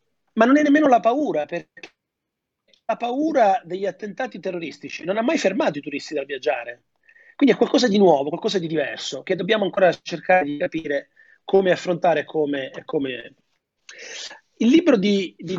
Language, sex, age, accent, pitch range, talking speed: Italian, male, 30-49, native, 155-210 Hz, 160 wpm